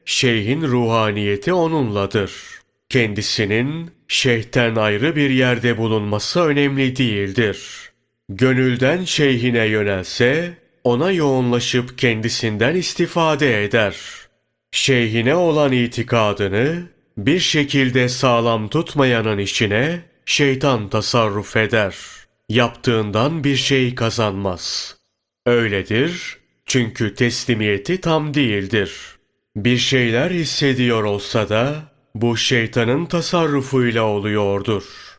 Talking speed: 80 wpm